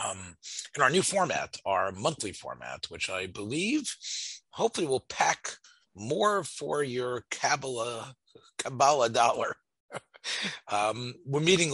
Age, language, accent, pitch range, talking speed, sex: 40-59, English, American, 95-120 Hz, 120 wpm, male